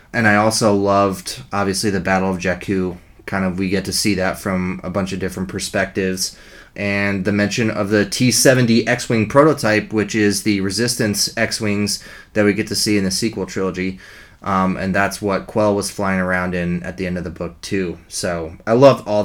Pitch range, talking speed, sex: 95-115 Hz, 210 wpm, male